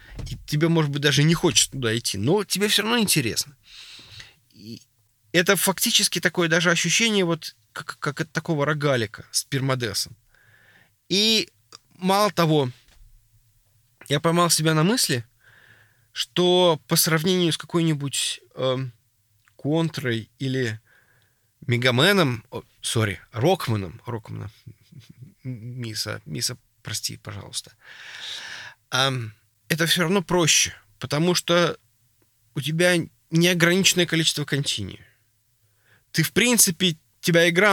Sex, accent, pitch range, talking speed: male, native, 115-175 Hz, 110 wpm